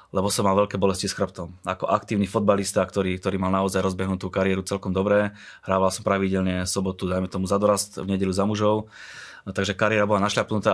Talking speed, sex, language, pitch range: 185 wpm, male, Slovak, 95-105 Hz